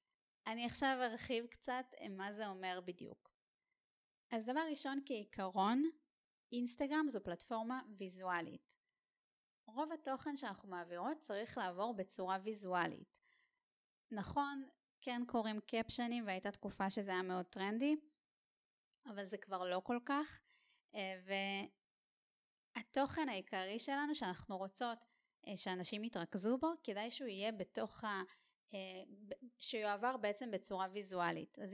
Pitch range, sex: 190-250 Hz, female